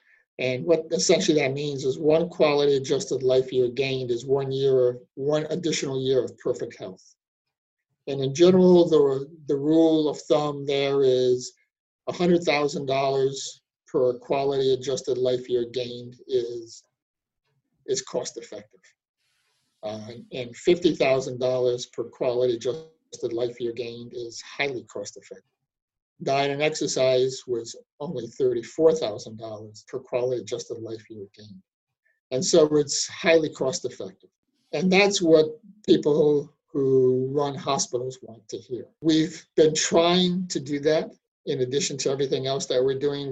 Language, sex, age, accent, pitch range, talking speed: English, male, 50-69, American, 125-160 Hz, 135 wpm